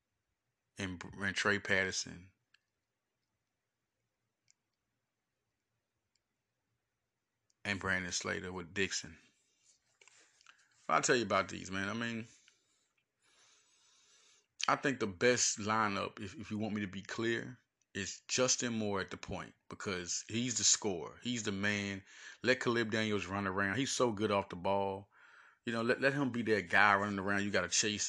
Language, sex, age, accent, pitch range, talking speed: English, male, 30-49, American, 100-130 Hz, 145 wpm